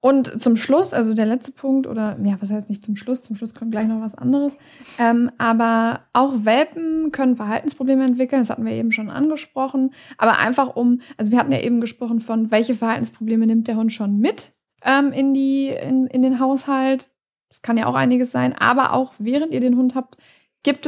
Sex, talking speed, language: female, 200 wpm, German